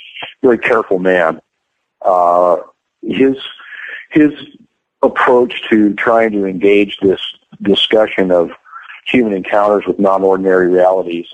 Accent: American